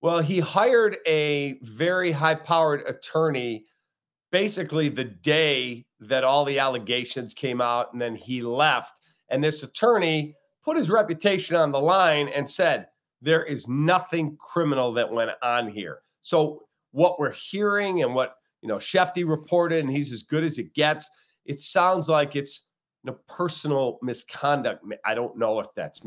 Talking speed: 155 wpm